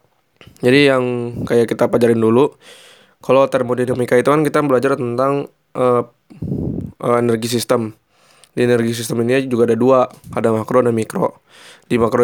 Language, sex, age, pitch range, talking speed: Indonesian, male, 20-39, 120-135 Hz, 140 wpm